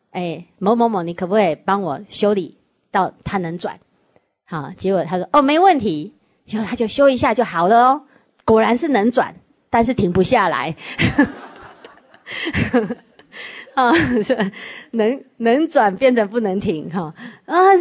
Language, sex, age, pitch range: Chinese, female, 30-49, 200-285 Hz